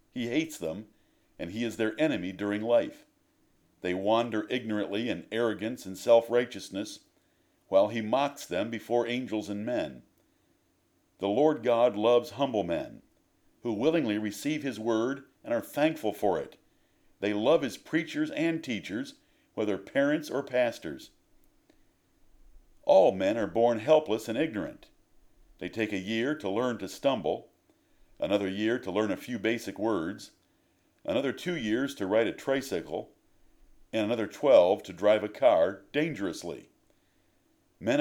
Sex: male